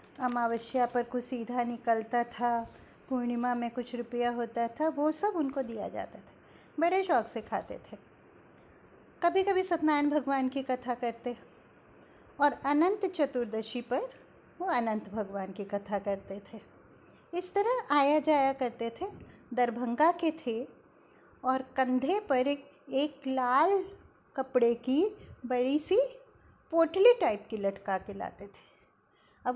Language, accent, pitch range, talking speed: Hindi, native, 235-300 Hz, 140 wpm